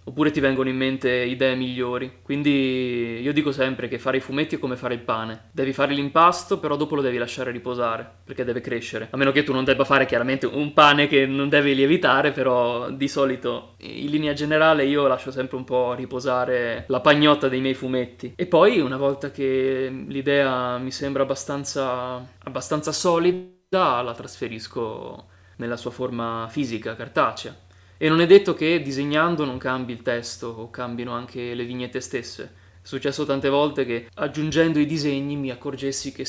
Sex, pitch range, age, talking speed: male, 125-140 Hz, 20-39, 180 wpm